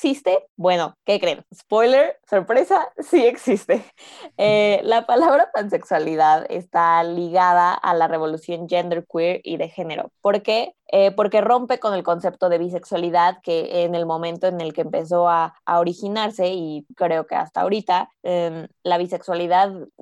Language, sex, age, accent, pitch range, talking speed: Spanish, female, 20-39, Mexican, 170-200 Hz, 155 wpm